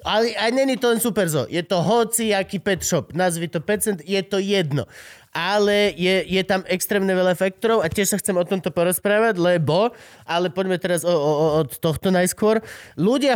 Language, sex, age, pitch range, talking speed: Slovak, male, 30-49, 150-205 Hz, 190 wpm